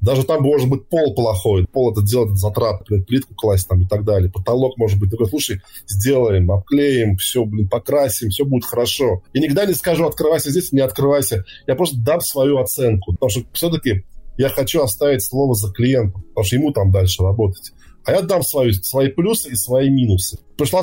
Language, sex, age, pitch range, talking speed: Russian, male, 20-39, 95-130 Hz, 195 wpm